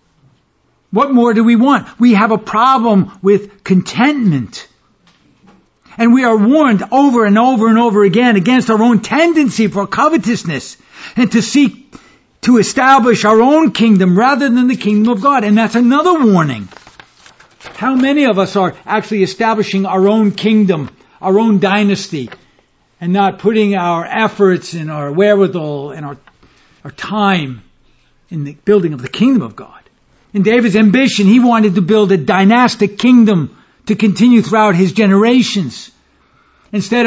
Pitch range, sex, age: 185-230 Hz, male, 60-79